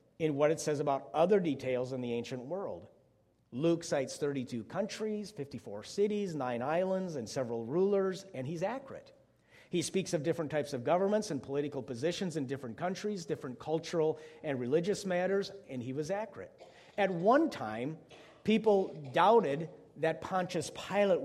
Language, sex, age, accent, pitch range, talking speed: English, male, 50-69, American, 150-185 Hz, 155 wpm